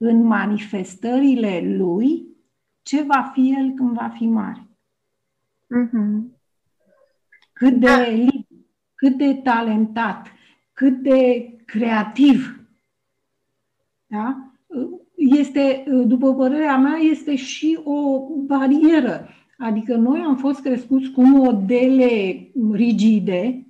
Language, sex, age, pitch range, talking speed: Romanian, female, 50-69, 225-285 Hz, 95 wpm